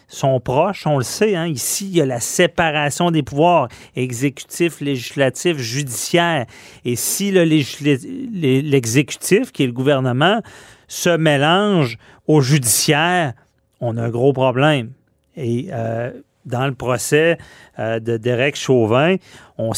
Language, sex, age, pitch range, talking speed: French, male, 40-59, 120-165 Hz, 135 wpm